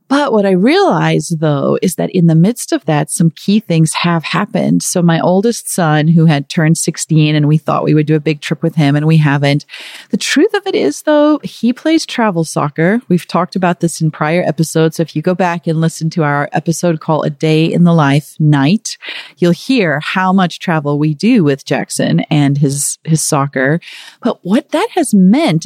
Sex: female